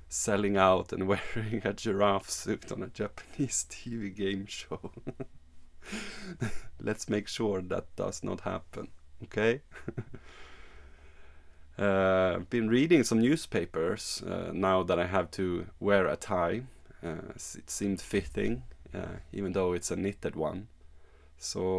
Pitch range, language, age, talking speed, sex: 75-105 Hz, English, 30-49, 130 wpm, male